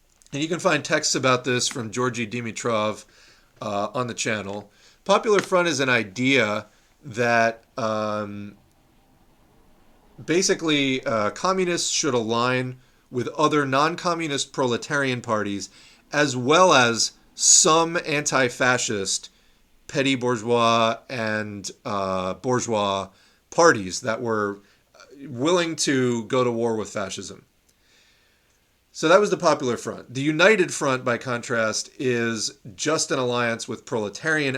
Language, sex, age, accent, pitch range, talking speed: English, male, 40-59, American, 110-145 Hz, 120 wpm